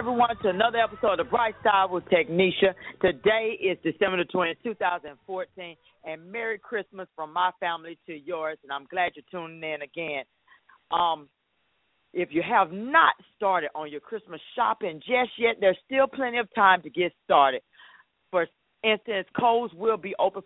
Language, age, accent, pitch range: English, 40-59, American, 155-200 Hz